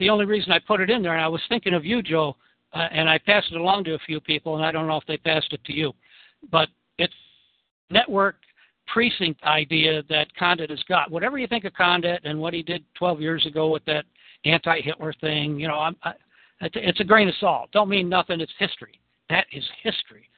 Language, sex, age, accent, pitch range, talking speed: English, male, 60-79, American, 155-190 Hz, 225 wpm